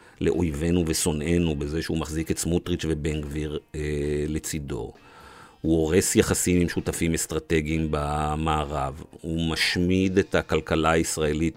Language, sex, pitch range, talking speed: Hebrew, male, 80-90 Hz, 115 wpm